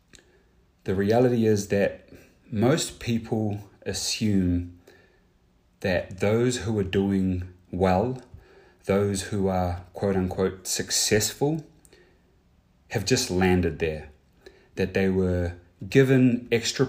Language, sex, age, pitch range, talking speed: English, male, 30-49, 90-105 Hz, 95 wpm